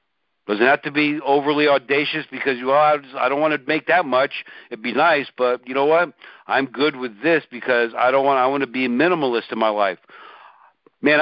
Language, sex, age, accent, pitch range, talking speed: English, male, 60-79, American, 120-150 Hz, 225 wpm